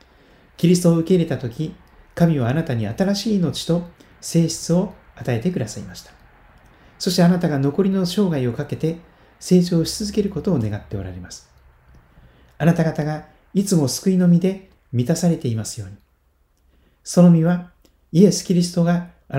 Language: Japanese